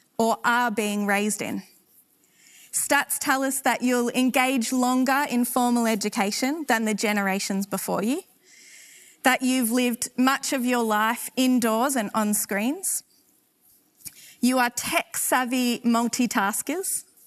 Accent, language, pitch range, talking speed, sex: Australian, English, 215-260 Hz, 120 wpm, female